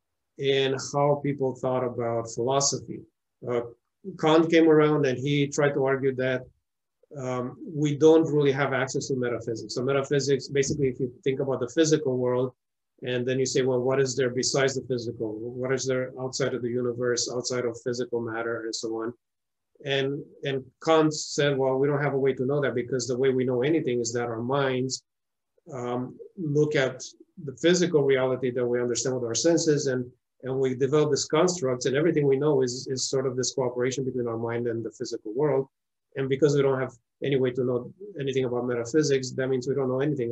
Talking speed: 200 wpm